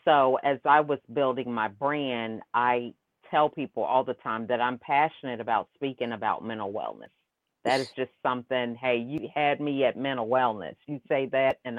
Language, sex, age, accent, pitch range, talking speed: English, female, 40-59, American, 125-145 Hz, 185 wpm